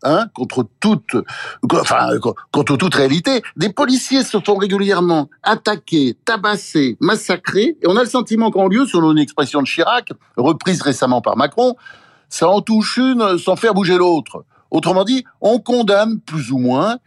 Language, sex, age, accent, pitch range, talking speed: French, male, 60-79, French, 145-225 Hz, 160 wpm